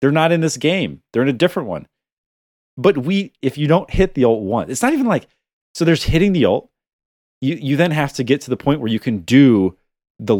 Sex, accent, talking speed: male, American, 240 wpm